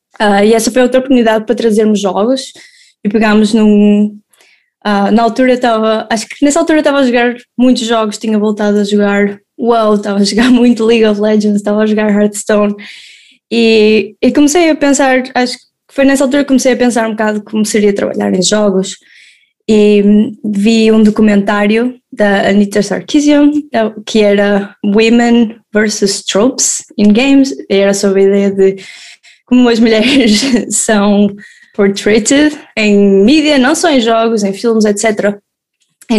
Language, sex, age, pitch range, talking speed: Portuguese, female, 10-29, 205-245 Hz, 160 wpm